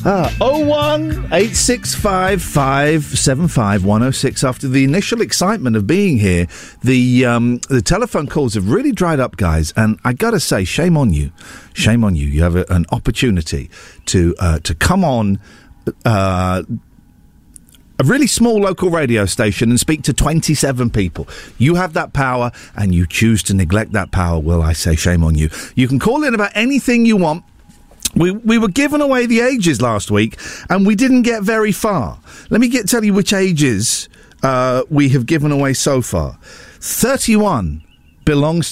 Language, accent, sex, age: English, British, male, 50-69